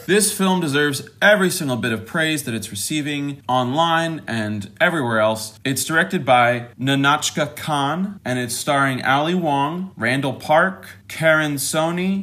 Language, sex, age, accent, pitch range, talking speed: English, male, 30-49, American, 120-160 Hz, 140 wpm